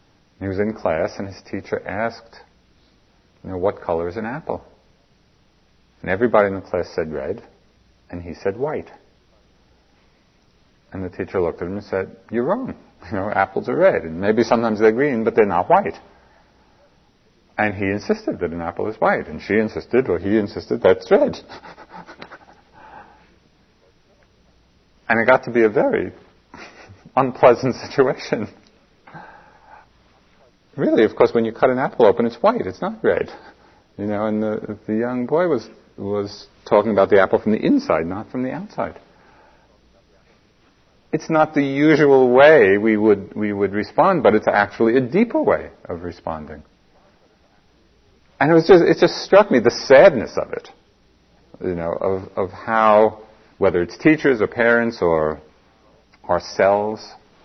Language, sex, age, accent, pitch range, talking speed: English, male, 50-69, American, 95-115 Hz, 160 wpm